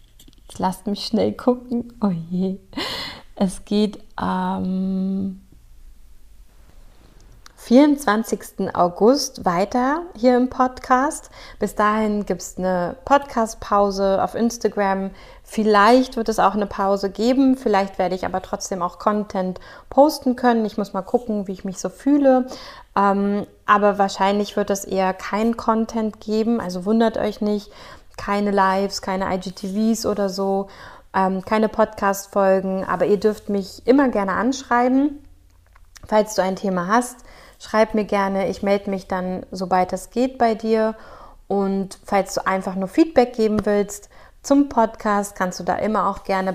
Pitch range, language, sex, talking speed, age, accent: 190-225 Hz, German, female, 145 wpm, 20-39, German